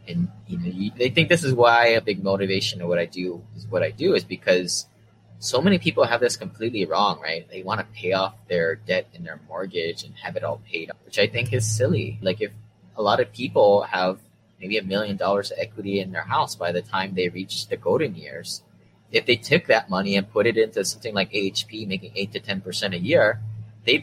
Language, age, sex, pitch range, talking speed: English, 20-39, male, 100-120 Hz, 225 wpm